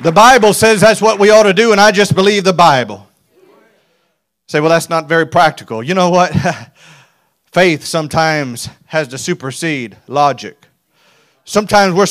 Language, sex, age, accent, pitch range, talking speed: English, male, 40-59, American, 185-240 Hz, 160 wpm